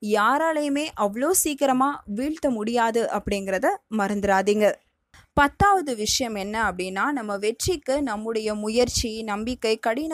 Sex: female